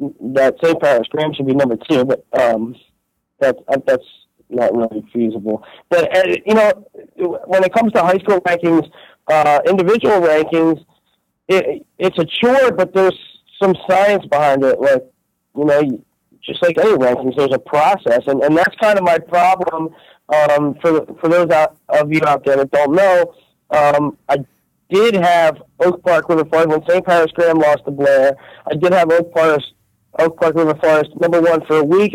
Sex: male